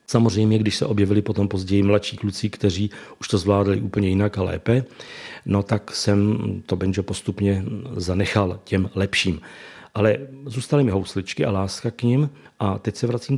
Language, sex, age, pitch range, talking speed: Czech, male, 40-59, 100-115 Hz, 165 wpm